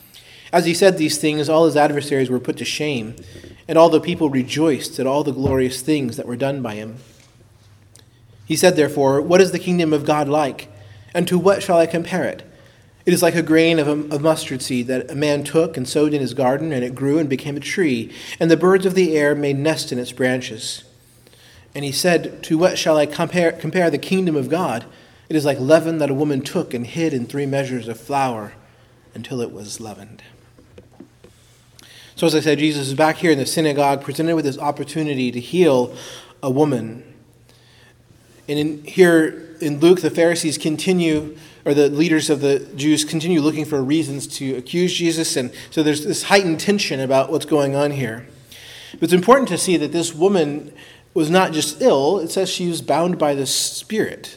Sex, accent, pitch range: male, American, 130-165 Hz